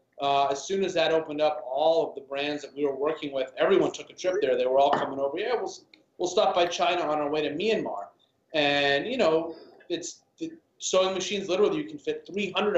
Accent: American